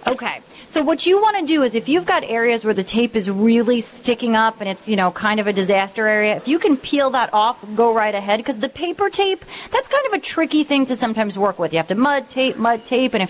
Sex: female